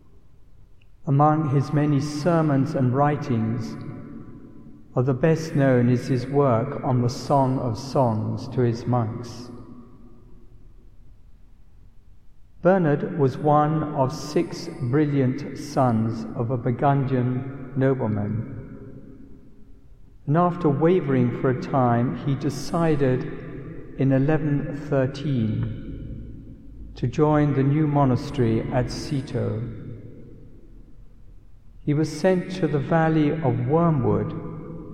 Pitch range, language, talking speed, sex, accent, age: 120-150 Hz, English, 100 wpm, male, British, 60-79